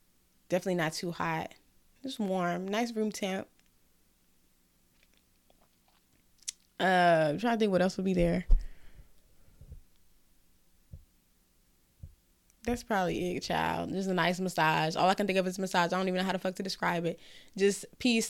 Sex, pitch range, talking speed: female, 155-210 Hz, 150 wpm